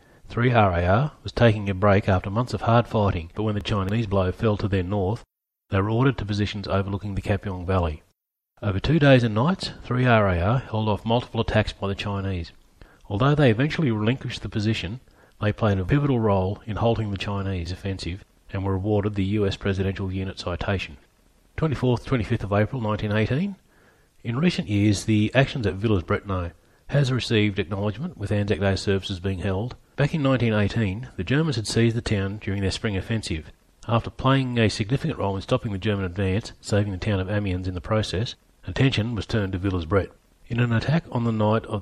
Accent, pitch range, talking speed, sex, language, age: Australian, 95-120 Hz, 190 wpm, male, English, 30-49